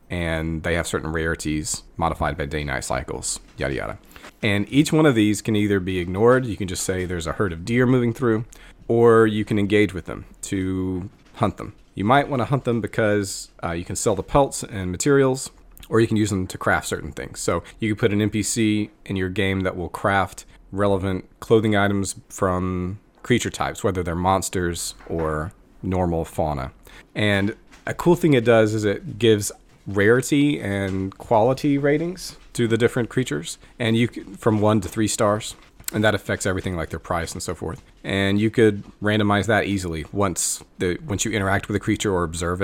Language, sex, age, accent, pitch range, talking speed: English, male, 30-49, American, 90-115 Hz, 195 wpm